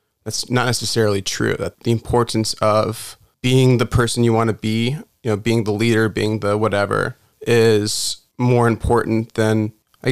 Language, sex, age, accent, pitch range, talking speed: English, male, 20-39, American, 110-120 Hz, 165 wpm